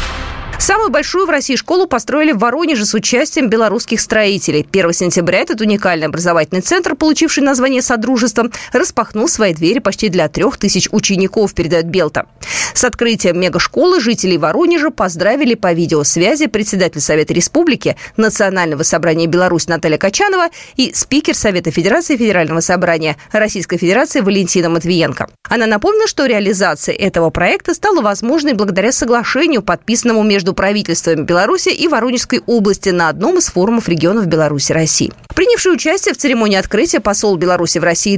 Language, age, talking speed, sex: Russian, 20-39, 140 wpm, female